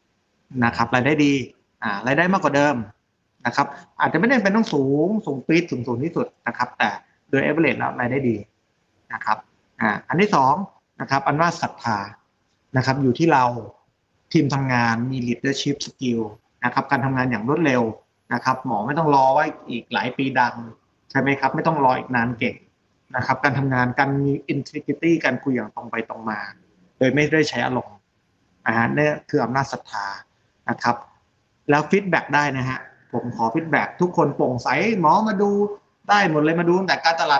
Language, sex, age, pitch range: Thai, male, 20-39, 120-155 Hz